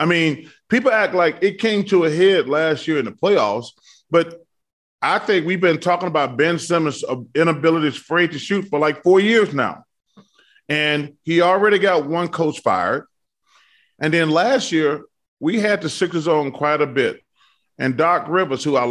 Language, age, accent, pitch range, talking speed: English, 30-49, American, 155-195 Hz, 180 wpm